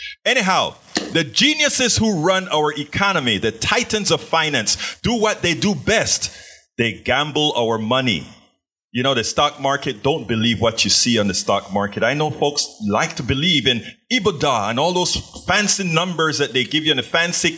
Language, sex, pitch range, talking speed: English, male, 120-165 Hz, 185 wpm